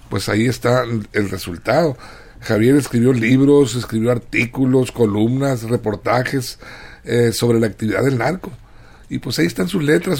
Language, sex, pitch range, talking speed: Spanish, male, 110-140 Hz, 140 wpm